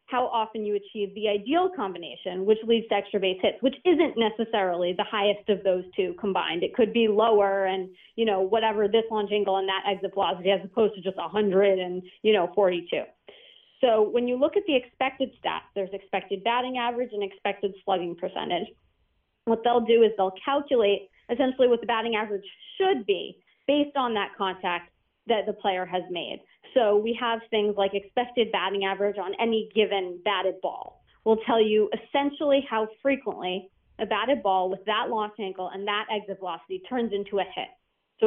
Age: 30-49